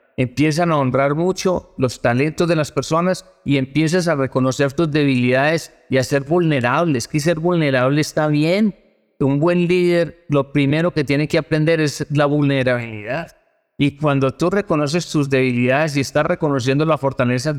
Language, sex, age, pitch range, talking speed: Spanish, male, 50-69, 130-160 Hz, 160 wpm